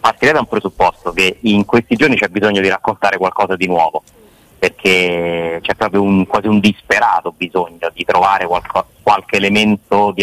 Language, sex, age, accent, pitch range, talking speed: Italian, male, 30-49, native, 90-105 Hz, 170 wpm